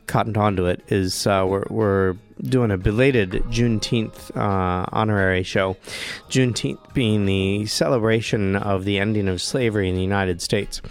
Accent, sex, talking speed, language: American, male, 150 wpm, English